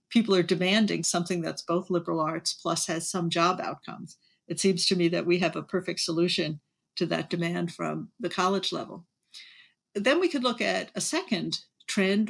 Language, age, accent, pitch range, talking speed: English, 60-79, American, 175-200 Hz, 185 wpm